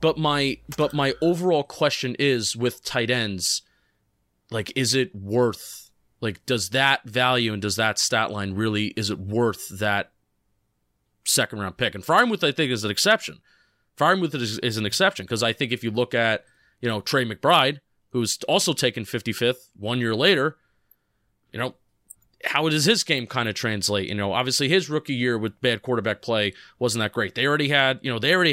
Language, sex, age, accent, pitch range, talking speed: English, male, 30-49, American, 110-135 Hz, 185 wpm